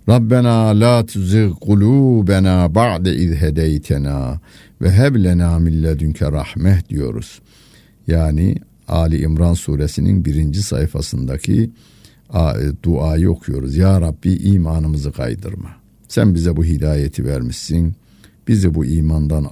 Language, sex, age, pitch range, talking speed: Turkish, male, 60-79, 80-110 Hz, 95 wpm